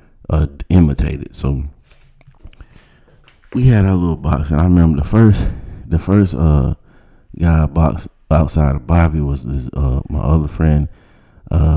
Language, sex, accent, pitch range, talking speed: English, male, American, 75-95 Hz, 145 wpm